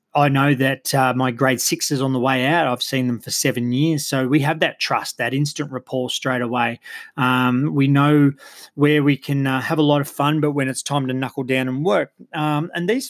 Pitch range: 130-150 Hz